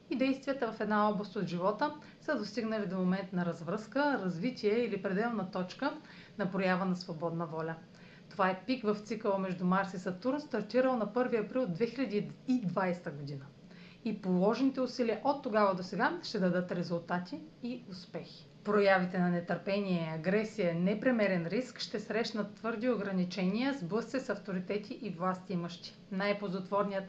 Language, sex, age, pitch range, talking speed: Bulgarian, female, 40-59, 185-230 Hz, 145 wpm